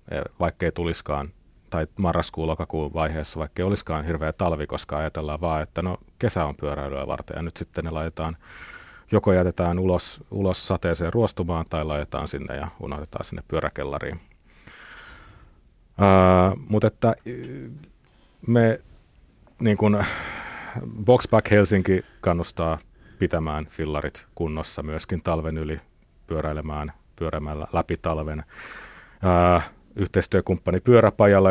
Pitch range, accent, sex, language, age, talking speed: 80-95 Hz, native, male, Finnish, 30-49, 115 wpm